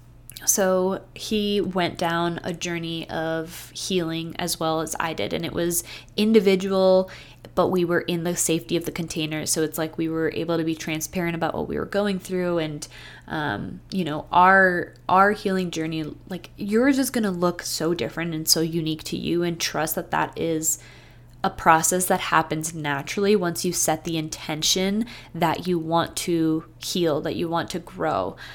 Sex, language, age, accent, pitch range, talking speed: female, English, 20-39, American, 160-185 Hz, 185 wpm